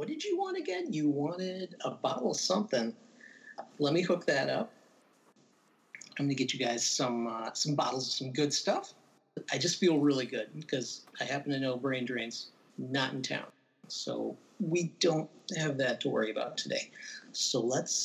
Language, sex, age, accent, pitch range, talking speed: English, male, 40-59, American, 120-180 Hz, 185 wpm